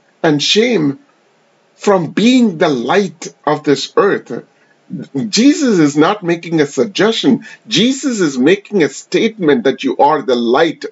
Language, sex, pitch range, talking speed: English, male, 140-220 Hz, 135 wpm